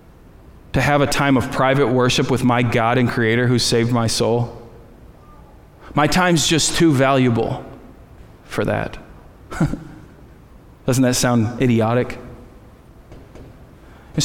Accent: American